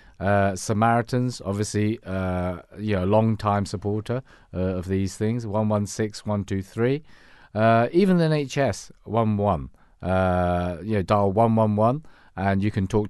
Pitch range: 95-115 Hz